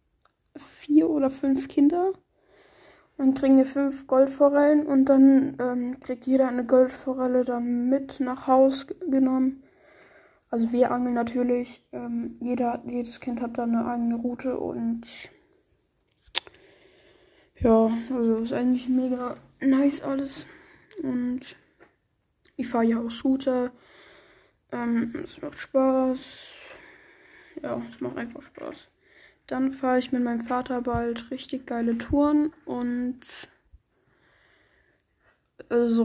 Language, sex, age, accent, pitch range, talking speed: German, female, 10-29, German, 235-270 Hz, 115 wpm